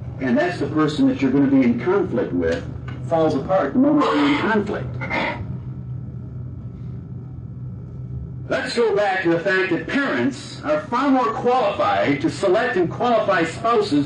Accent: American